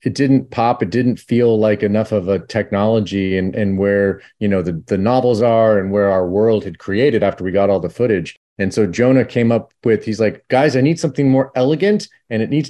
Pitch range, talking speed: 105-140 Hz, 230 wpm